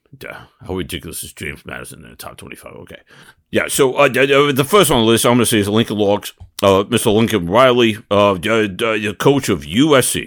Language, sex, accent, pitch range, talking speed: English, male, American, 100-130 Hz, 205 wpm